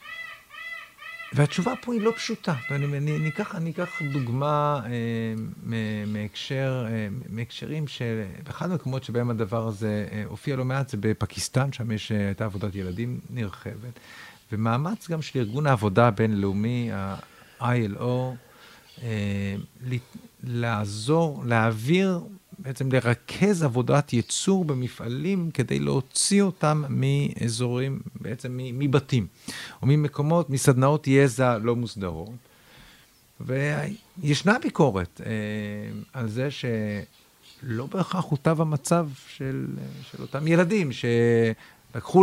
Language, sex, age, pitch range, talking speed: Hebrew, male, 50-69, 110-150 Hz, 105 wpm